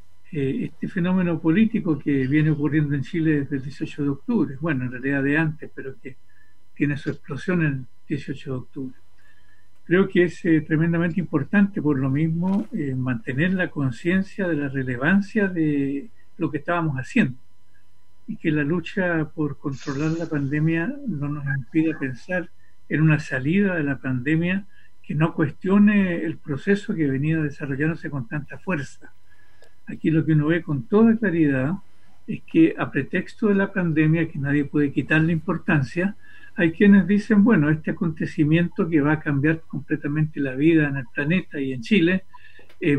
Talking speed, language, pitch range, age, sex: 165 wpm, Spanish, 140-175 Hz, 60-79, male